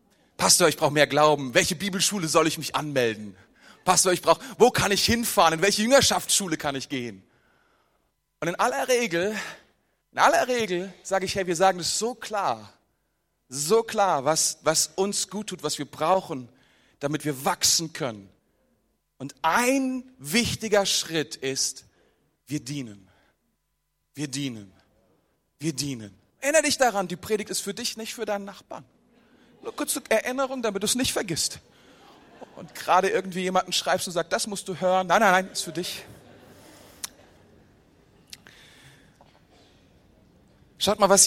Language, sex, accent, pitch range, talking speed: German, male, German, 150-205 Hz, 145 wpm